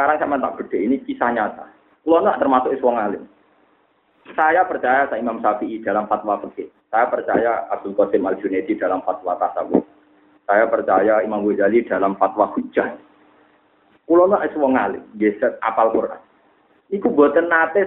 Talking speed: 145 wpm